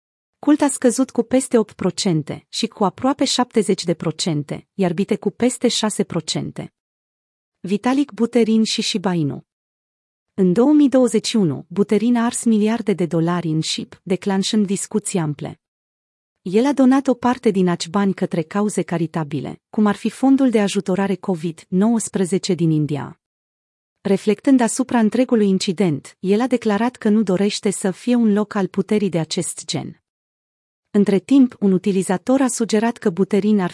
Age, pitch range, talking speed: 30-49, 175-225 Hz, 140 wpm